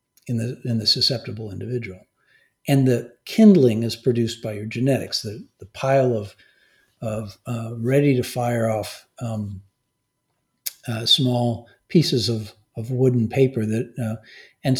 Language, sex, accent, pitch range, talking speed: English, male, American, 115-155 Hz, 140 wpm